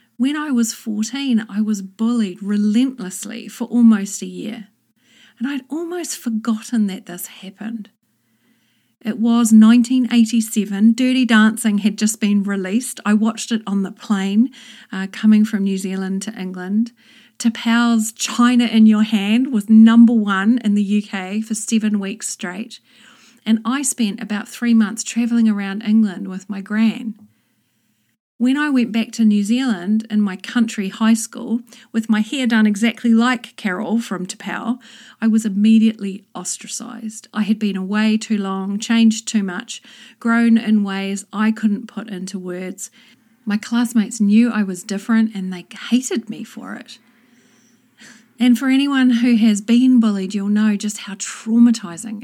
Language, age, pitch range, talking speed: English, 40-59, 210-235 Hz, 155 wpm